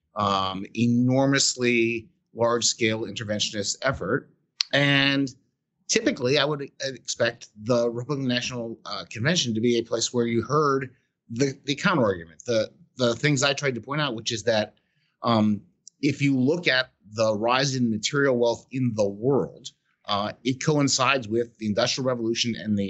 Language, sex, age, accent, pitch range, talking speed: English, male, 30-49, American, 110-140 Hz, 150 wpm